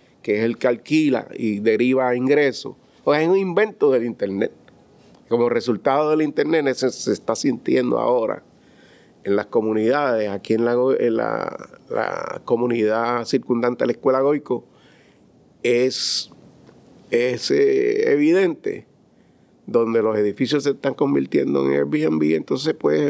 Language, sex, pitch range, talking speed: Spanish, male, 120-185 Hz, 135 wpm